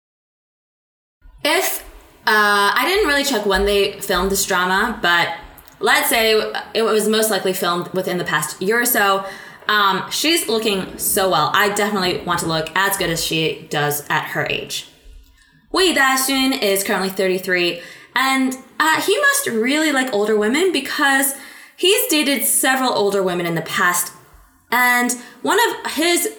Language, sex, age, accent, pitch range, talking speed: English, female, 20-39, American, 190-260 Hz, 155 wpm